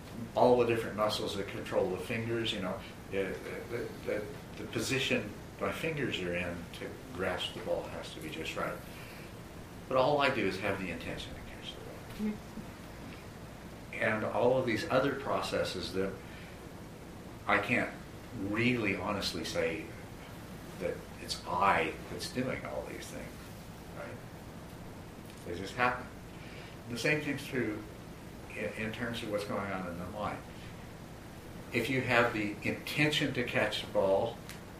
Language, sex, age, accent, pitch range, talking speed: English, male, 60-79, American, 90-120 Hz, 150 wpm